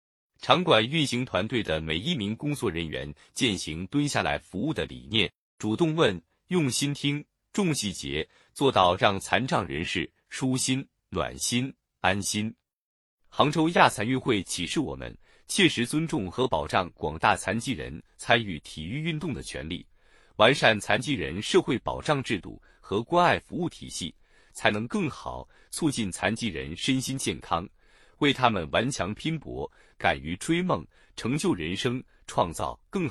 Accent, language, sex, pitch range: native, Chinese, male, 95-145 Hz